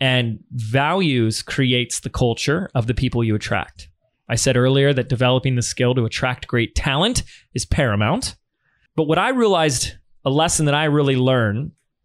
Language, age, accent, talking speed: English, 20-39, American, 165 wpm